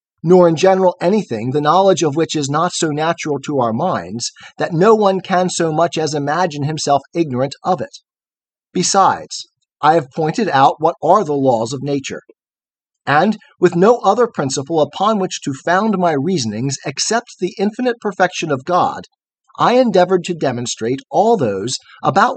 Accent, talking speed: American, 165 wpm